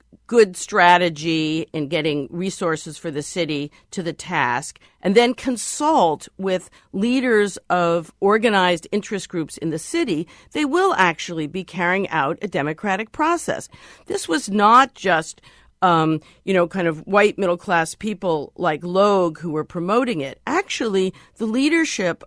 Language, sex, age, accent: English, female, 50-69, American